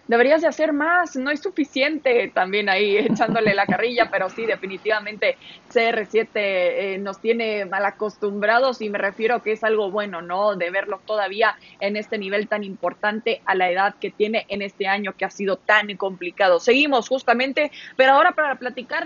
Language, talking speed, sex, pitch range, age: Spanish, 175 wpm, female, 200-245 Hz, 20-39